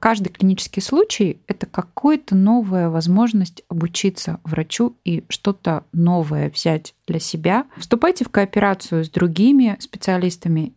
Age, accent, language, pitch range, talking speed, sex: 20-39, native, Russian, 165-205 Hz, 115 wpm, female